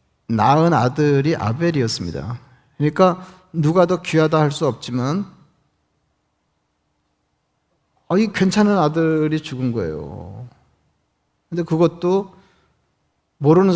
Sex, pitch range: male, 130-170 Hz